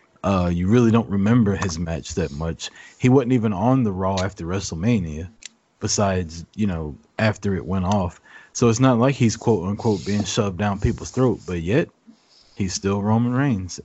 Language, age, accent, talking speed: English, 30-49, American, 180 wpm